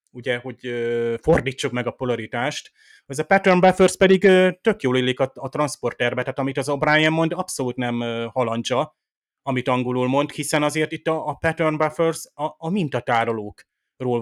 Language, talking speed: Hungarian, 160 wpm